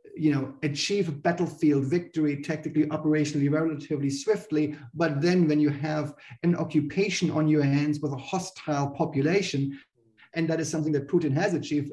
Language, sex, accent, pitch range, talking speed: Hindi, male, German, 145-170 Hz, 160 wpm